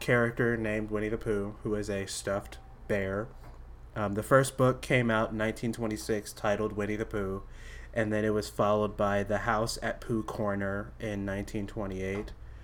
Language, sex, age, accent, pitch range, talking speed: English, male, 30-49, American, 95-110 Hz, 165 wpm